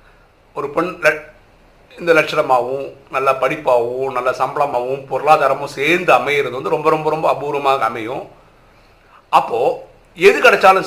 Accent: native